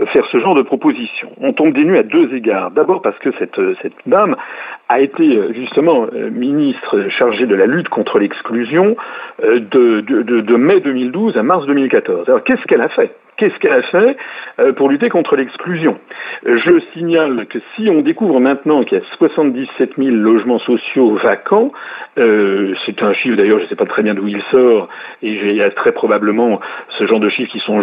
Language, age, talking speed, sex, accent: French, 50-69, 195 wpm, male, French